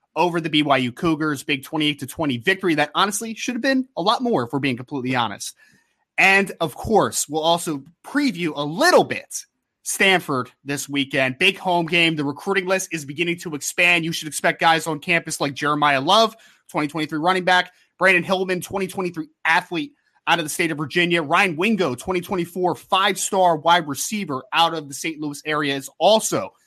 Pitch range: 150-190 Hz